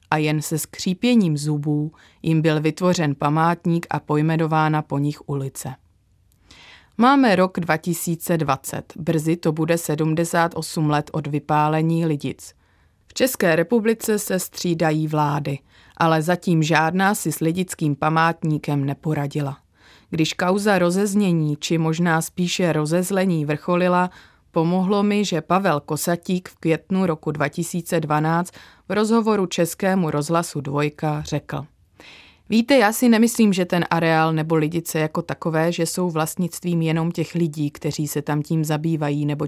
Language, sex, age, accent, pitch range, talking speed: Czech, female, 30-49, native, 150-175 Hz, 130 wpm